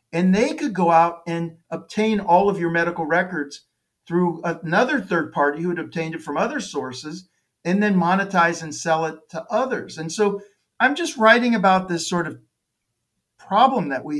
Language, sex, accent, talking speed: English, male, American, 180 wpm